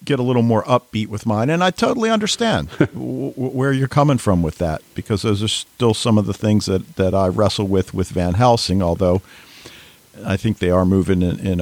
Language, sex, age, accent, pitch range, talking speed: English, male, 50-69, American, 95-130 Hz, 210 wpm